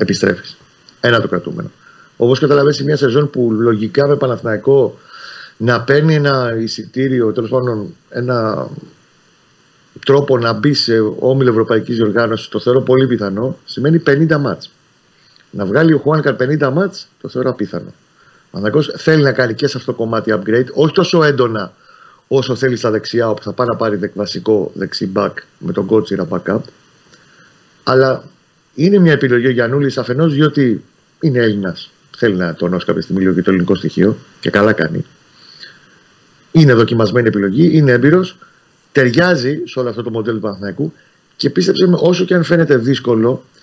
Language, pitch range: Greek, 110-150 Hz